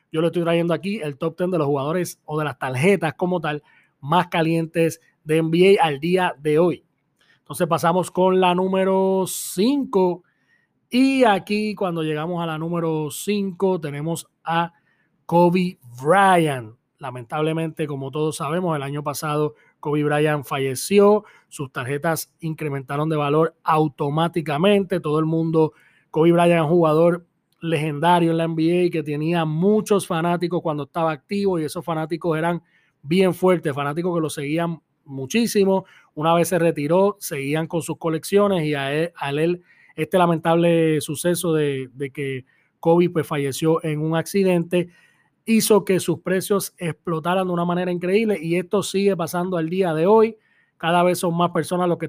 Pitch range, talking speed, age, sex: 155-180 Hz, 160 wpm, 30-49, male